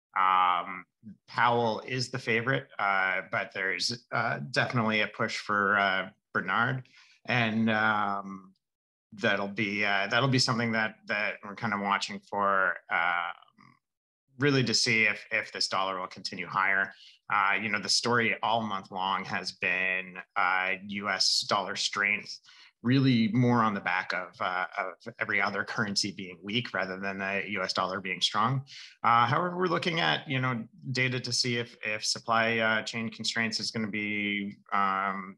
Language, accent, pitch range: English, American, 100-125 Hz